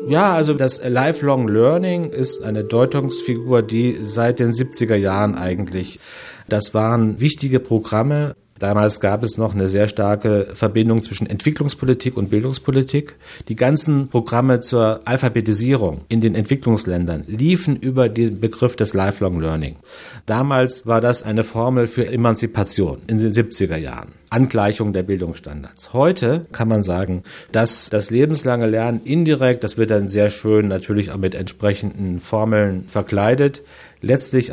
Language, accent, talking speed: German, German, 140 wpm